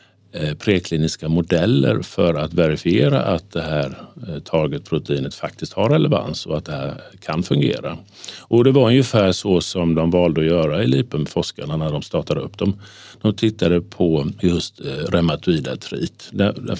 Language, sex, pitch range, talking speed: Swedish, male, 85-105 Hz, 150 wpm